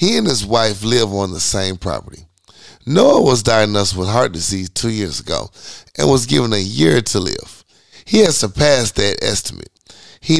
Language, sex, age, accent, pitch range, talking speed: English, male, 30-49, American, 100-125 Hz, 180 wpm